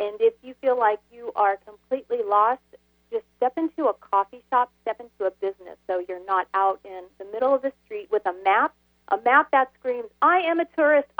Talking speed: 215 wpm